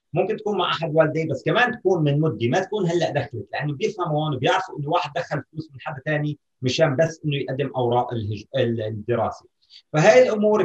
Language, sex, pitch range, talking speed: Arabic, male, 130-175 Hz, 195 wpm